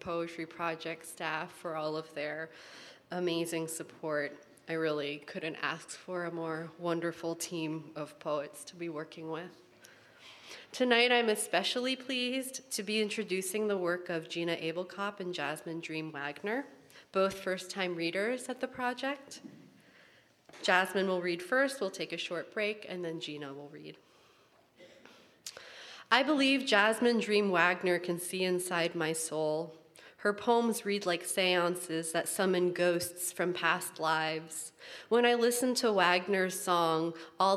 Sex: female